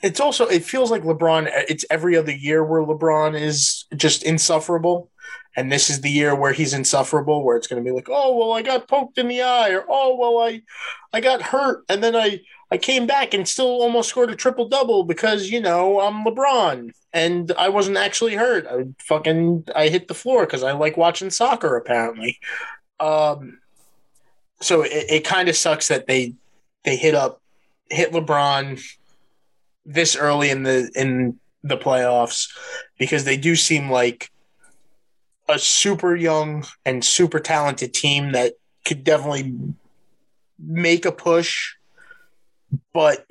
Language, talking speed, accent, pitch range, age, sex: English, 165 wpm, American, 140-185 Hz, 20-39, male